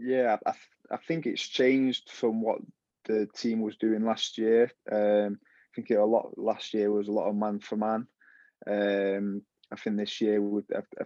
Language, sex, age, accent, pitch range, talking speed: English, male, 20-39, British, 105-110 Hz, 200 wpm